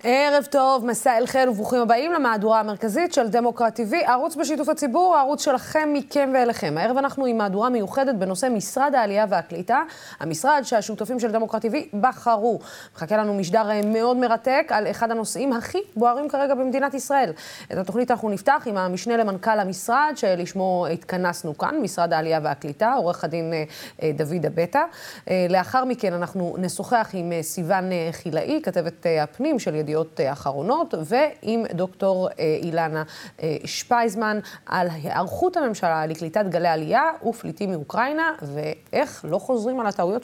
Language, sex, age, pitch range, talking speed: Hebrew, female, 20-39, 165-240 Hz, 125 wpm